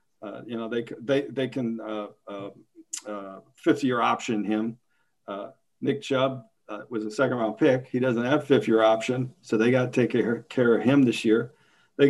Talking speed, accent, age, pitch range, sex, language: 205 wpm, American, 50-69, 120-140 Hz, male, English